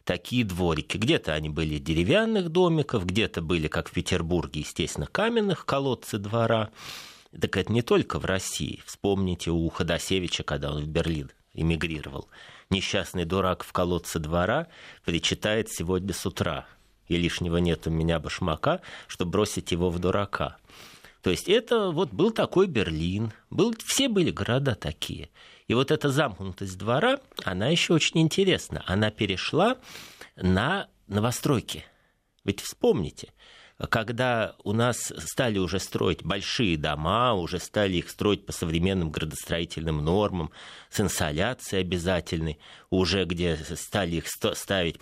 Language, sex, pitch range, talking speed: Russian, male, 85-115 Hz, 135 wpm